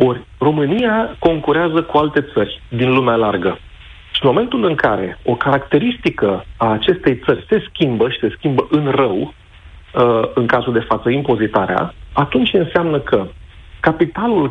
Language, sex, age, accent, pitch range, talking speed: Romanian, male, 40-59, native, 110-150 Hz, 145 wpm